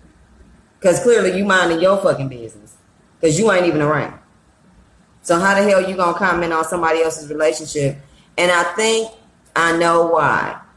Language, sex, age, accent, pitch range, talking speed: English, female, 20-39, American, 150-190 Hz, 160 wpm